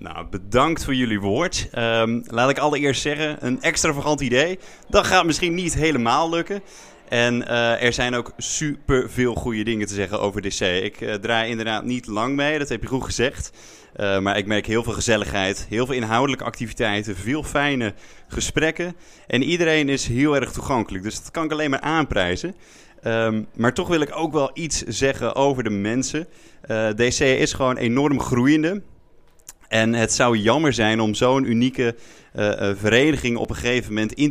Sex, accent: male, Dutch